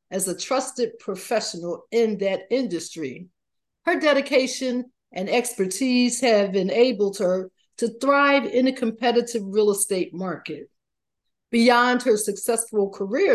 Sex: female